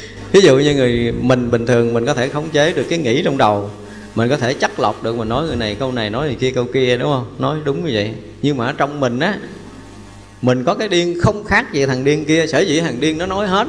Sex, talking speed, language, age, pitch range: male, 275 wpm, Vietnamese, 20-39, 110-150 Hz